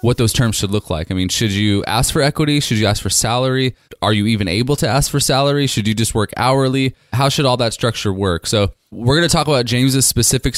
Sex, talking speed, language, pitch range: male, 255 wpm, English, 105-130 Hz